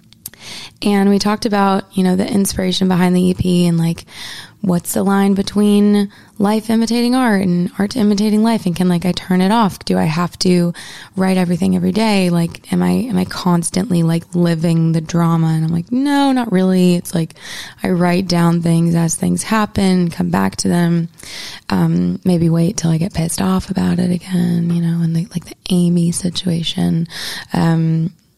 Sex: female